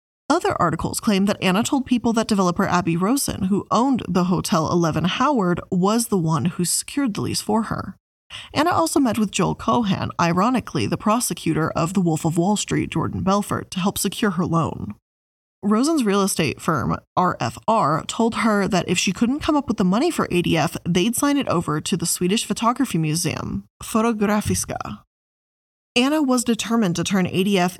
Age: 20-39